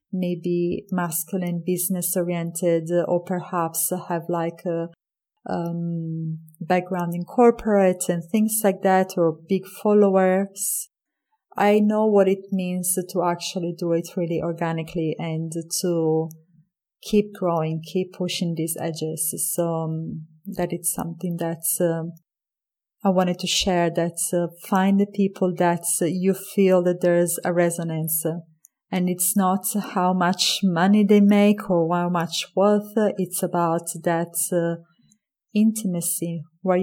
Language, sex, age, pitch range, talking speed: English, female, 30-49, 170-190 Hz, 135 wpm